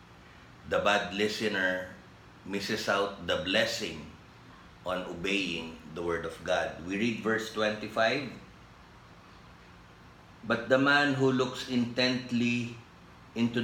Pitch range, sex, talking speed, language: 90-115 Hz, male, 105 wpm, English